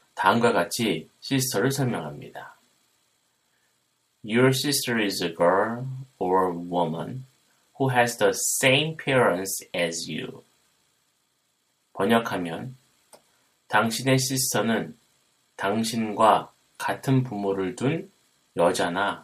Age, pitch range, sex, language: 30-49, 95-130 Hz, male, Korean